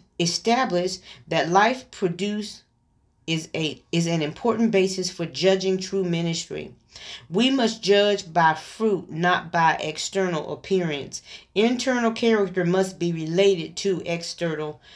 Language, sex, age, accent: English, female, 40-59, American